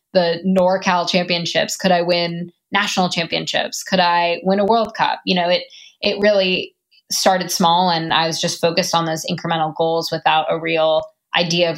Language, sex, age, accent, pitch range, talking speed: English, female, 20-39, American, 165-190 Hz, 180 wpm